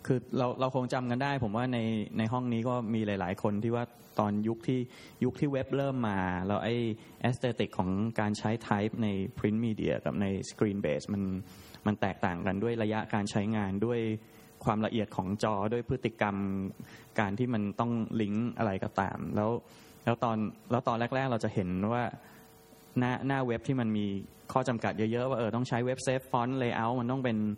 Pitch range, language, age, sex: 105-125 Hz, English, 20-39, male